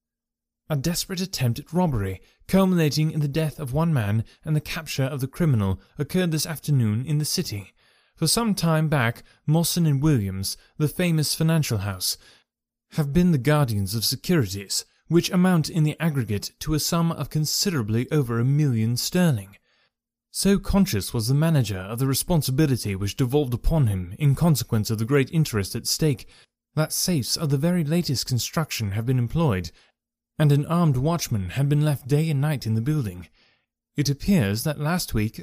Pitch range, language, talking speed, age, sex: 120-165 Hz, English, 175 wpm, 30-49, male